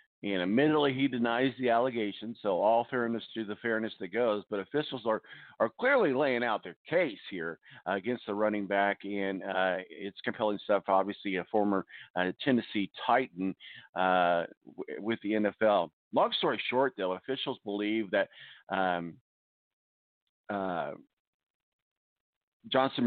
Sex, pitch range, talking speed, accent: male, 100-125 Hz, 135 wpm, American